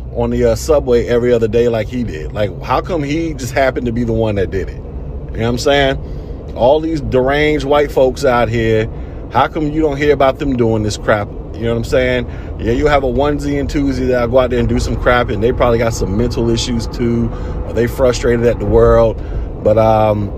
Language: English